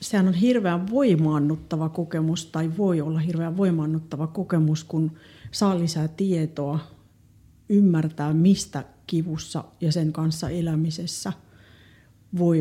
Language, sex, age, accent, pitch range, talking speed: Finnish, female, 40-59, native, 155-190 Hz, 110 wpm